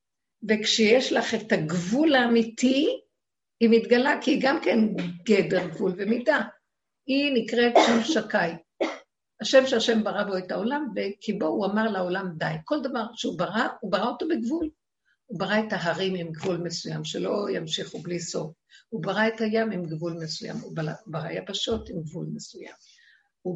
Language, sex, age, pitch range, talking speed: Hebrew, female, 50-69, 195-260 Hz, 155 wpm